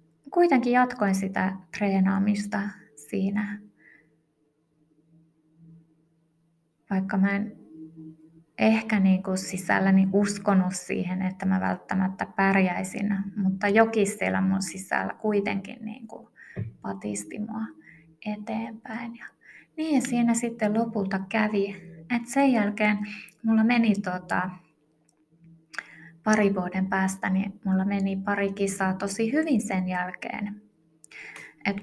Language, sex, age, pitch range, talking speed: Finnish, female, 20-39, 165-215 Hz, 105 wpm